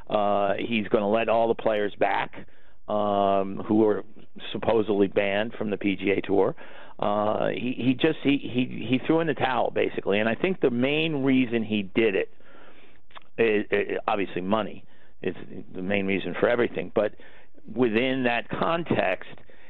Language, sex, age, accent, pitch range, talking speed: English, male, 50-69, American, 105-125 Hz, 160 wpm